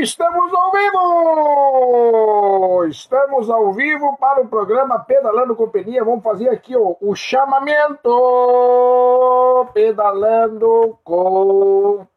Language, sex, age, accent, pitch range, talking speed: Portuguese, male, 50-69, Brazilian, 195-270 Hz, 95 wpm